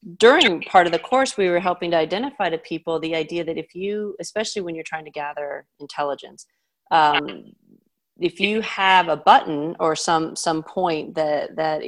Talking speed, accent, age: 180 wpm, American, 30-49